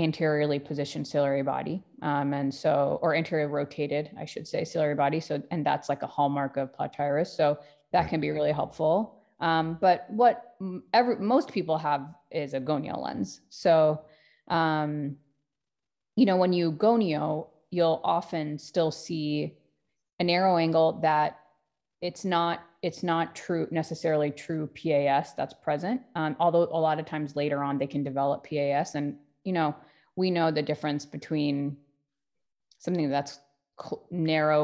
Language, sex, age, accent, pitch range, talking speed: English, female, 20-39, American, 145-165 Hz, 155 wpm